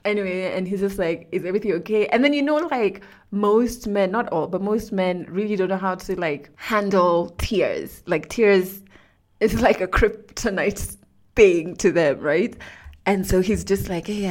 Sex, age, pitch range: female, 20-39, 185-250 Hz